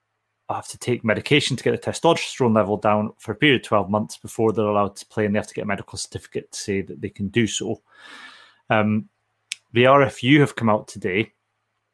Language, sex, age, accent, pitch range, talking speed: English, male, 30-49, British, 105-125 Hz, 215 wpm